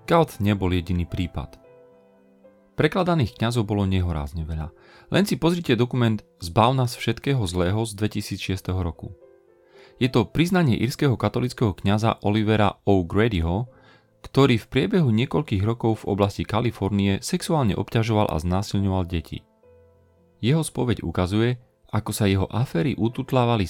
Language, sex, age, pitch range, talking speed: Slovak, male, 40-59, 95-120 Hz, 125 wpm